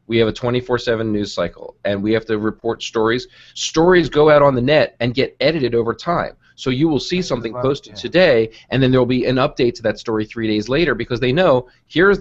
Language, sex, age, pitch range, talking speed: English, male, 30-49, 105-125 Hz, 225 wpm